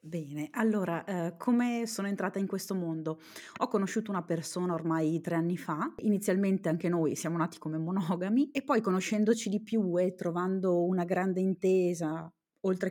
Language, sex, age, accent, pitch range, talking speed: Italian, female, 30-49, native, 170-205 Hz, 160 wpm